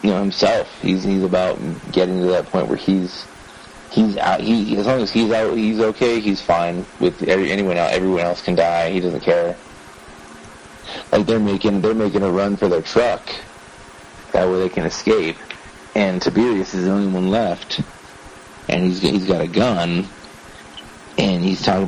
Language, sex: English, male